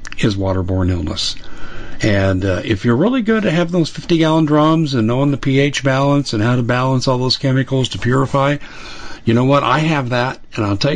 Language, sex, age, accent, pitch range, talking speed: English, male, 50-69, American, 105-125 Hz, 210 wpm